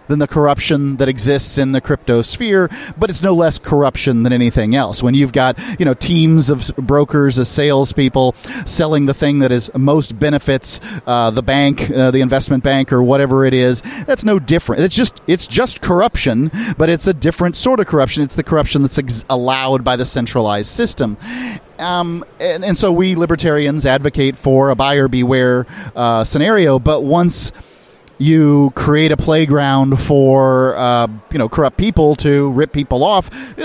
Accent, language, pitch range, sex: American, English, 130-165 Hz, male